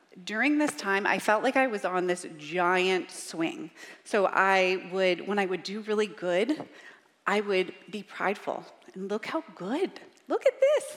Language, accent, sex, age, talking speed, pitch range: English, American, female, 30-49, 175 wpm, 190-275 Hz